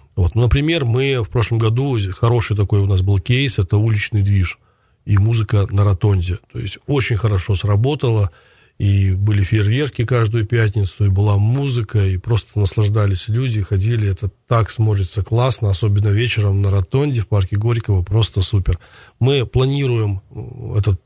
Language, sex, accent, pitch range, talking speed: Russian, male, native, 100-120 Hz, 150 wpm